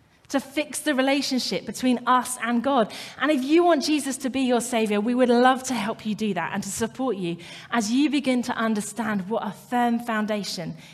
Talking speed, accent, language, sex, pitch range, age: 210 wpm, British, English, female, 180-235 Hz, 30-49